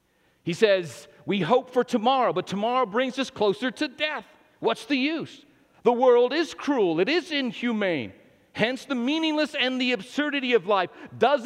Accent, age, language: American, 50-69, English